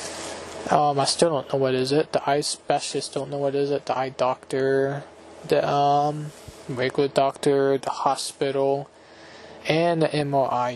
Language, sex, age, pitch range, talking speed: English, male, 20-39, 135-150 Hz, 155 wpm